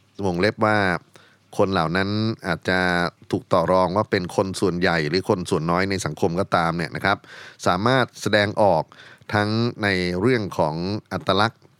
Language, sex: Thai, male